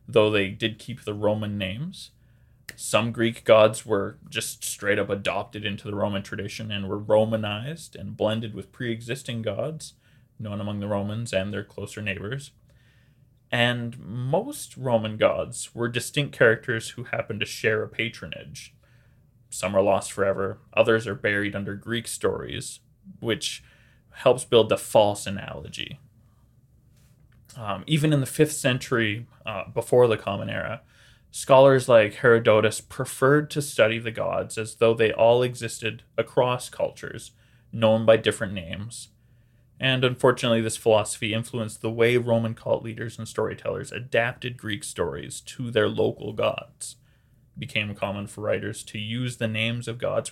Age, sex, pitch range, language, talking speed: 20-39, male, 110-125 Hz, English, 150 wpm